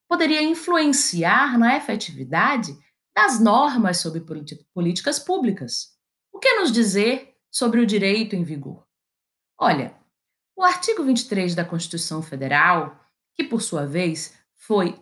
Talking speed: 120 wpm